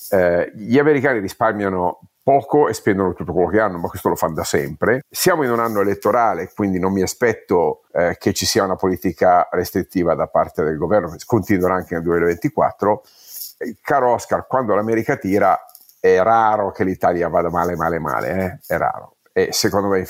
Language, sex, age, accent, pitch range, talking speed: Italian, male, 50-69, native, 90-110 Hz, 185 wpm